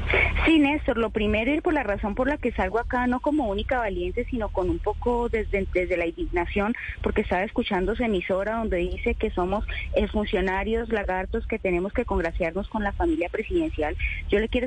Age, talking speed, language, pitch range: 30-49, 195 wpm, Spanish, 190-230 Hz